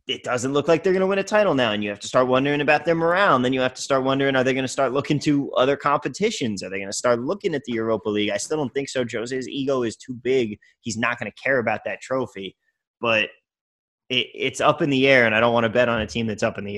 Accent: American